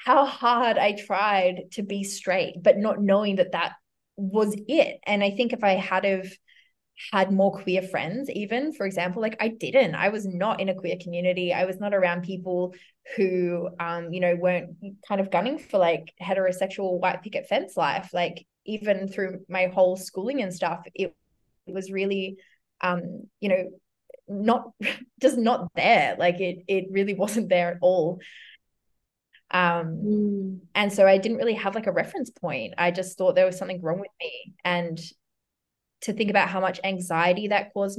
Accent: Australian